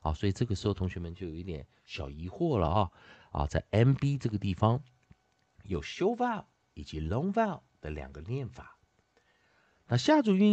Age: 50-69